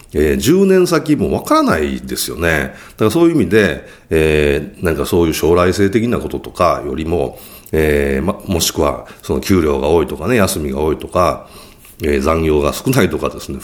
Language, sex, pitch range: Japanese, male, 70-110 Hz